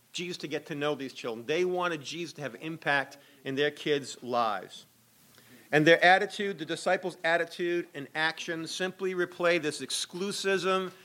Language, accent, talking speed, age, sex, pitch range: English, American, 155 wpm, 40-59, male, 140-180 Hz